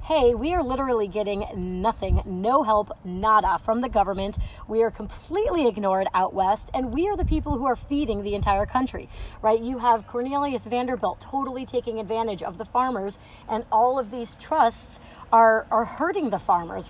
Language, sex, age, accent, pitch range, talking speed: English, female, 30-49, American, 200-245 Hz, 180 wpm